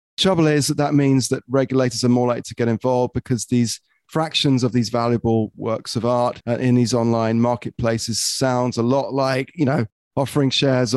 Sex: male